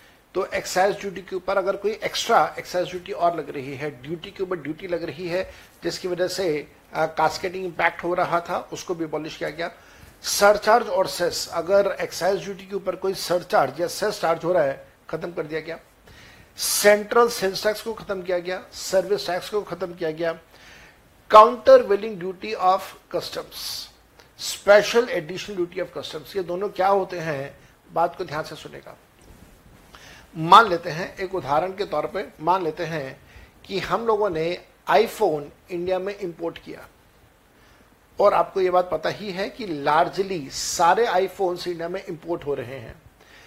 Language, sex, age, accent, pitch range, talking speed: Hindi, male, 60-79, native, 165-195 Hz, 170 wpm